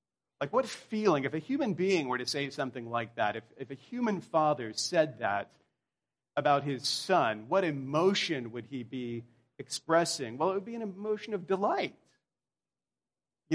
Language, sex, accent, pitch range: English, male, American, 140-205 Hz